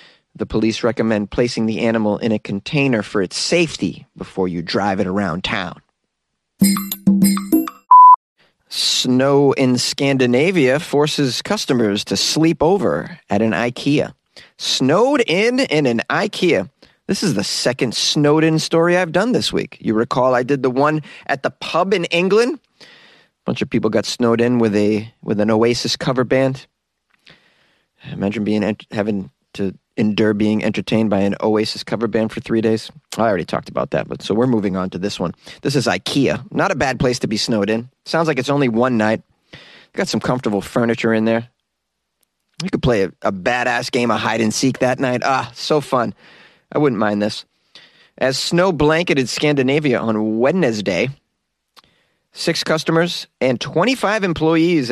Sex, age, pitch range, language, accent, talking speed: male, 30-49, 110-155 Hz, English, American, 170 wpm